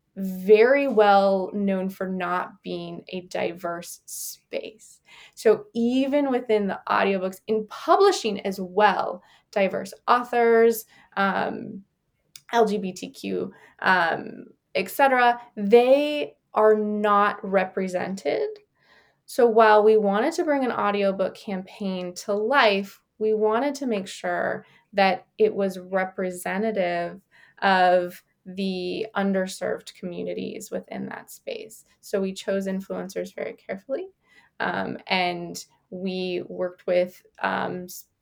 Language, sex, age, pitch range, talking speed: English, female, 20-39, 185-225 Hz, 105 wpm